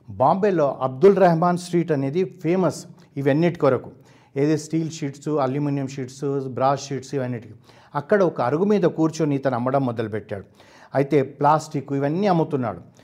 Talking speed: 130 wpm